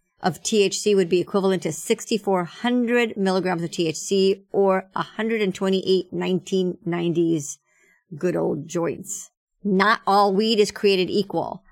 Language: English